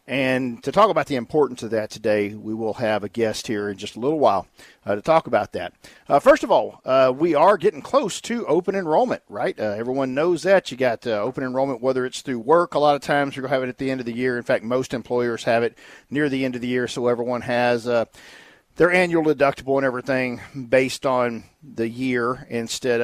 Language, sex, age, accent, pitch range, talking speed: English, male, 50-69, American, 115-140 Hz, 240 wpm